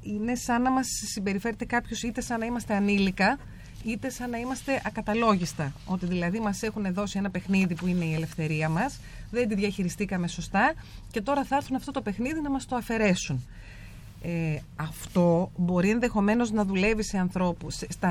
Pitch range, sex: 175-235 Hz, female